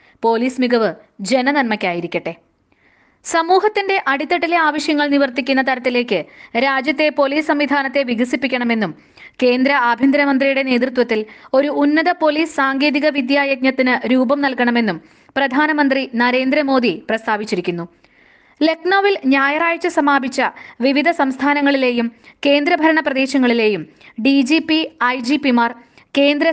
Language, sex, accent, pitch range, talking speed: Malayalam, female, native, 245-300 Hz, 75 wpm